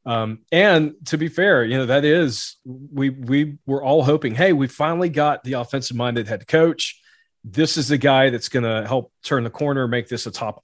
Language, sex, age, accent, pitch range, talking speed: English, male, 40-59, American, 120-155 Hz, 215 wpm